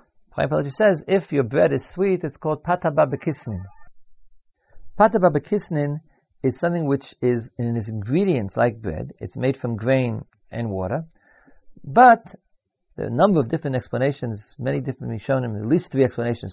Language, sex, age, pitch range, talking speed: English, male, 40-59, 115-170 Hz, 160 wpm